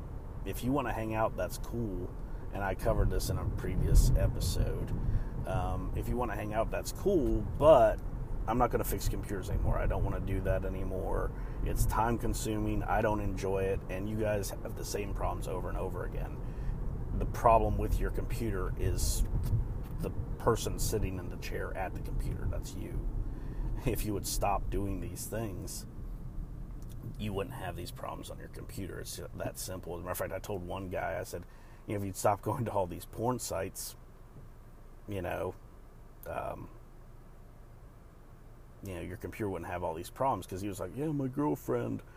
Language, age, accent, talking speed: English, 40-59, American, 190 wpm